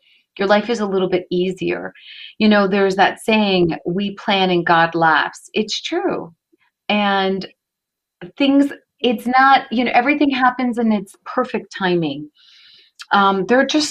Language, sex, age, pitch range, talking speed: English, female, 30-49, 170-210 Hz, 150 wpm